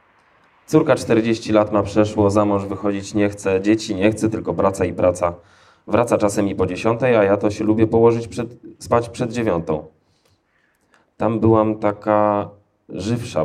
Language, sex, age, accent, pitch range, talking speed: Polish, male, 20-39, native, 90-110 Hz, 160 wpm